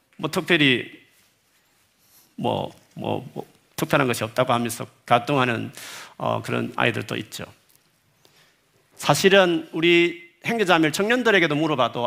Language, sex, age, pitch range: Korean, male, 40-59, 120-165 Hz